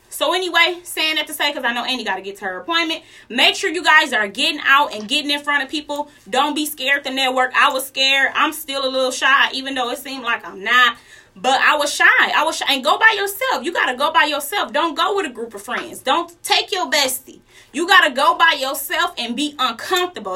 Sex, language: female, English